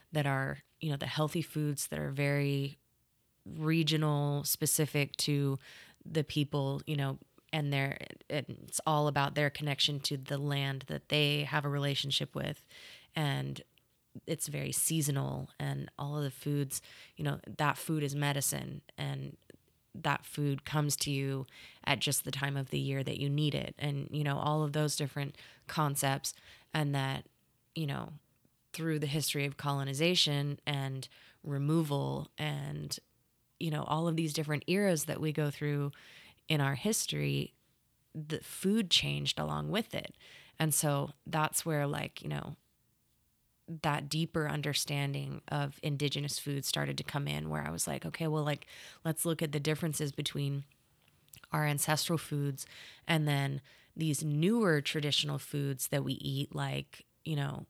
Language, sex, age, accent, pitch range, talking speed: English, female, 20-39, American, 140-155 Hz, 155 wpm